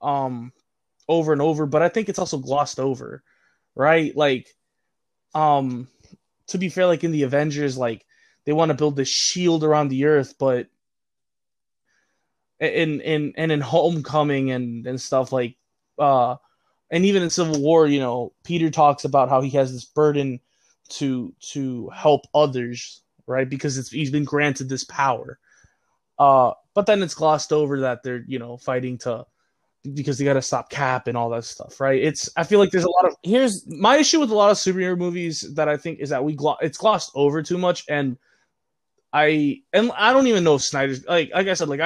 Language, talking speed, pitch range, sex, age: English, 190 wpm, 135-175 Hz, male, 20-39